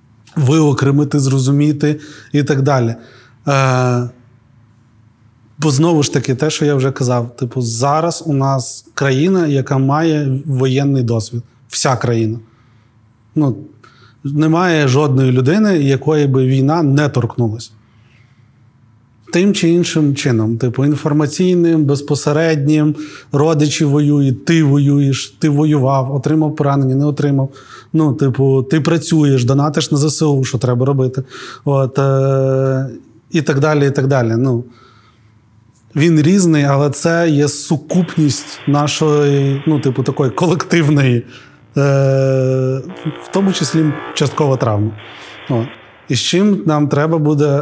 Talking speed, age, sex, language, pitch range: 120 wpm, 30-49, male, Ukrainian, 130-150 Hz